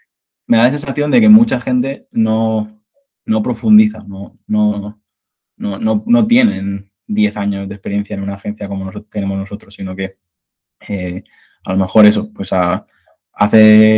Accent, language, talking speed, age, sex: Spanish, Spanish, 145 wpm, 20-39, male